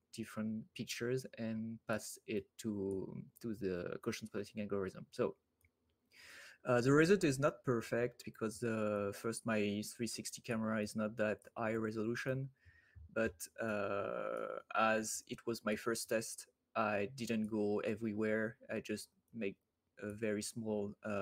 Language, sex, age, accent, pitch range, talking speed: English, male, 20-39, French, 105-120 Hz, 135 wpm